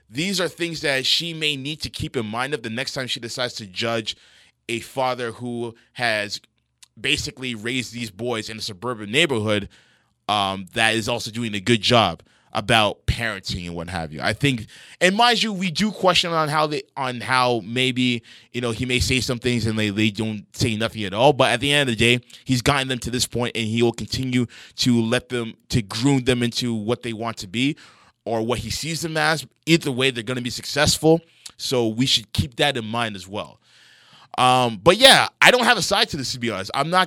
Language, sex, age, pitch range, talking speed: English, male, 20-39, 115-140 Hz, 225 wpm